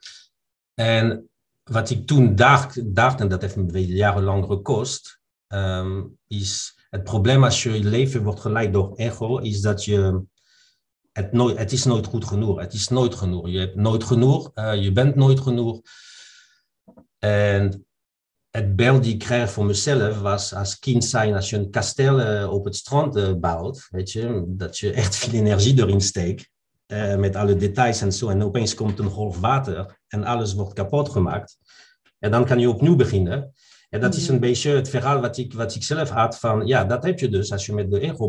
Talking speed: 185 wpm